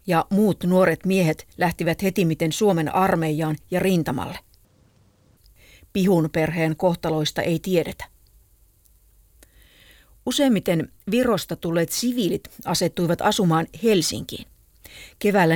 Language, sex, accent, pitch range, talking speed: Finnish, female, native, 155-195 Hz, 95 wpm